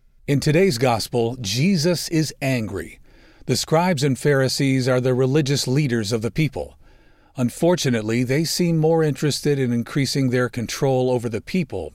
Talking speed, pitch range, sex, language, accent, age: 145 wpm, 120-150 Hz, male, English, American, 50-69